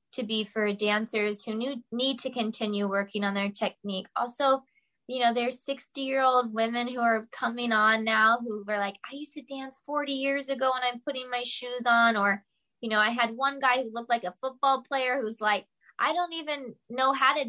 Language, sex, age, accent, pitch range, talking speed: English, female, 10-29, American, 210-260 Hz, 205 wpm